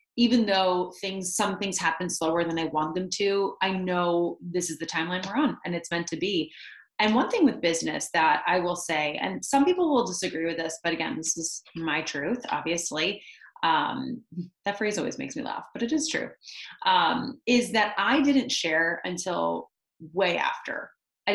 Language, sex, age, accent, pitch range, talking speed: English, female, 30-49, American, 170-215 Hz, 195 wpm